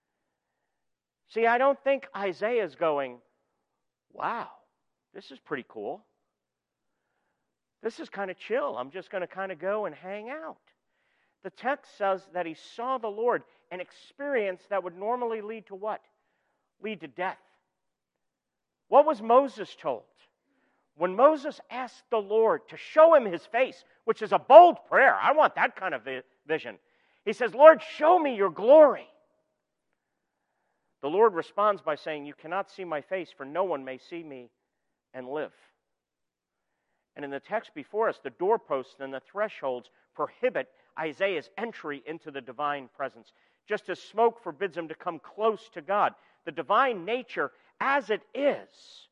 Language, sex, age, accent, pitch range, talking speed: English, male, 50-69, American, 165-240 Hz, 160 wpm